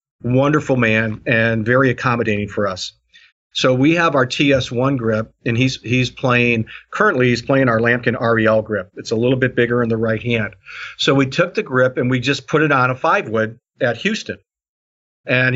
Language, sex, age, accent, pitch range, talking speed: English, male, 50-69, American, 115-135 Hz, 195 wpm